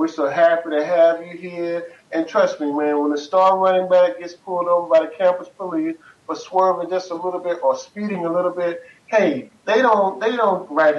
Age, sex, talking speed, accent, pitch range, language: 40-59, male, 215 wpm, American, 165-235 Hz, English